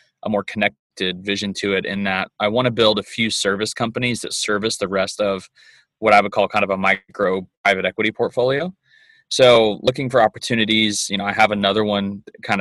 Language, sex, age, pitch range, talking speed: English, male, 20-39, 95-110 Hz, 205 wpm